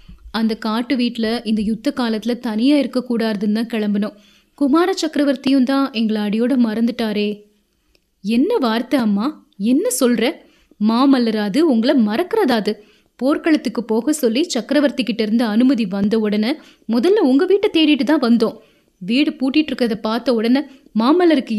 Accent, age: native, 20-39